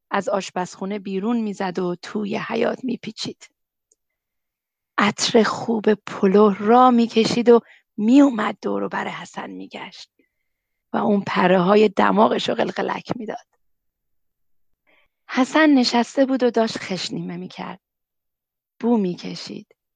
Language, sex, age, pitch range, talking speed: Persian, female, 30-49, 190-235 Hz, 110 wpm